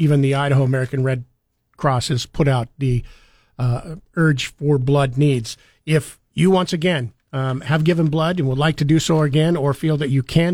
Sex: male